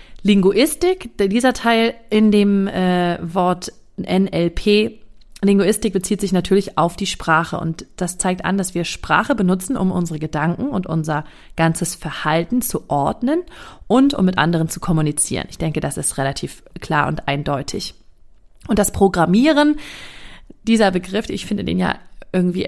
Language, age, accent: German, 30-49, German